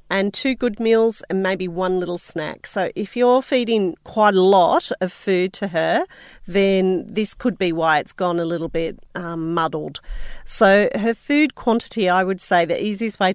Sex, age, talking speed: female, 40-59, 190 wpm